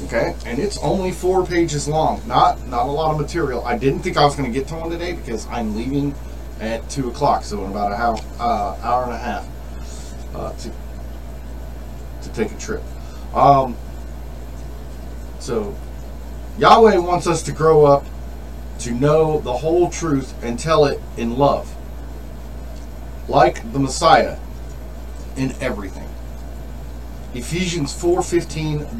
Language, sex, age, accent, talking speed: English, male, 40-59, American, 145 wpm